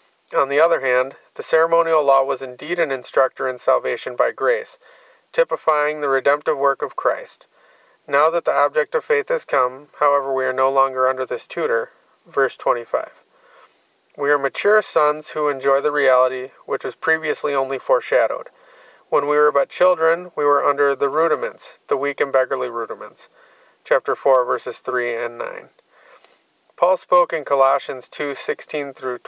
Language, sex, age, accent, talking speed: English, male, 30-49, American, 160 wpm